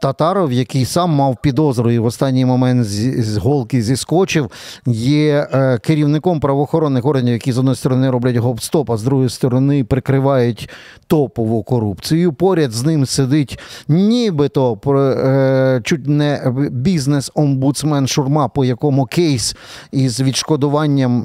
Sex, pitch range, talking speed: male, 130-160 Hz, 125 wpm